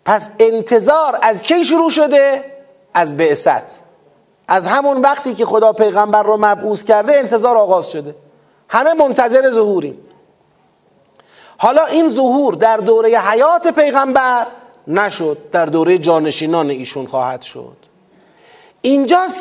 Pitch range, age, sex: 195-250 Hz, 40-59, male